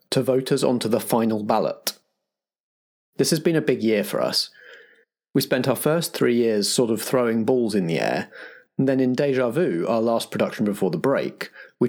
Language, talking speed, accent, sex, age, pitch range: English, 200 wpm, British, male, 30-49, 110-145 Hz